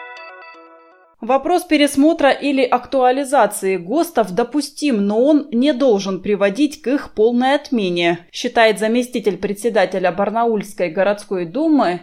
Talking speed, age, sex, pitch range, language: 105 wpm, 20-39, female, 195-255 Hz, Russian